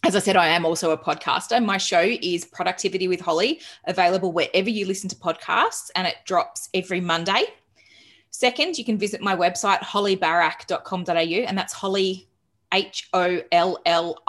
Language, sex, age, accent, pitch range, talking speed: English, female, 20-39, Australian, 165-195 Hz, 165 wpm